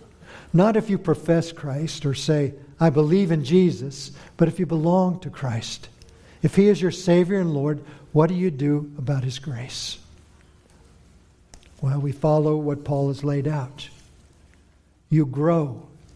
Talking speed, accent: 150 wpm, American